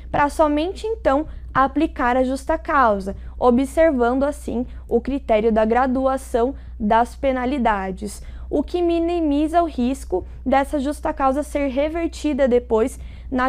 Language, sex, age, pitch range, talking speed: Portuguese, female, 10-29, 230-285 Hz, 120 wpm